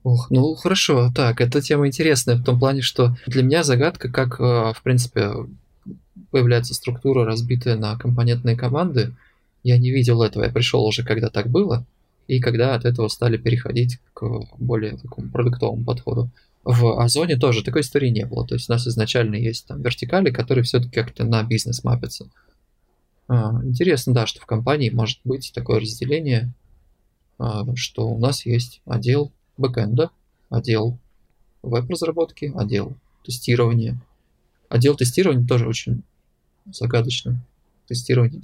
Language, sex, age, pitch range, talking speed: Russian, male, 20-39, 115-130 Hz, 140 wpm